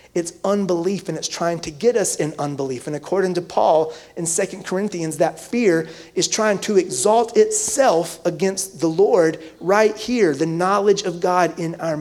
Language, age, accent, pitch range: English, 30-49, American, 150-185 Hz